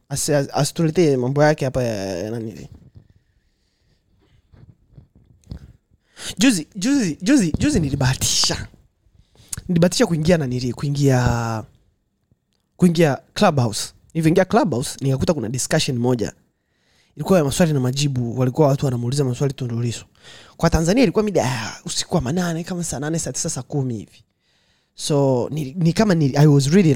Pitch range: 125-170 Hz